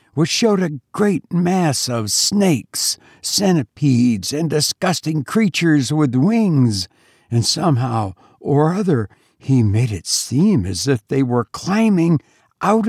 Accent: American